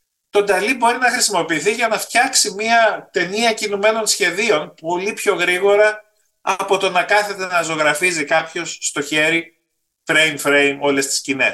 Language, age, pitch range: Greek, 30-49, 140-200 Hz